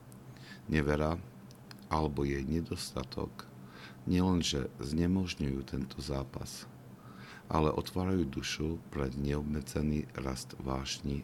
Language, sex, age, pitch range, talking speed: Slovak, male, 50-69, 65-75 Hz, 80 wpm